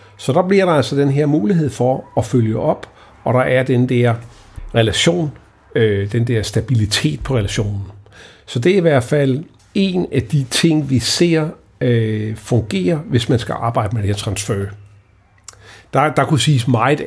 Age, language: 60-79, Danish